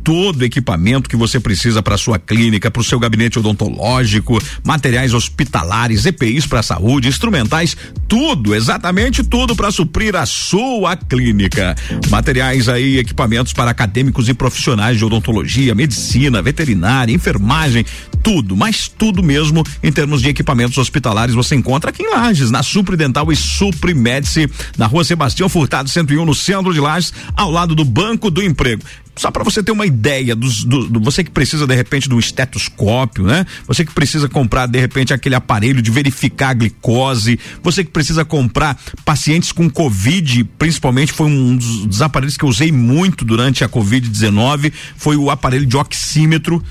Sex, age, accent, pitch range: male, 50-69, Brazilian, 115-155 Hz